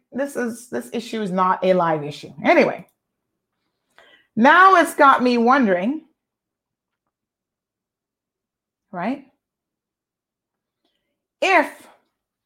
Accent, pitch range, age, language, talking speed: American, 195-260 Hz, 30-49, English, 80 wpm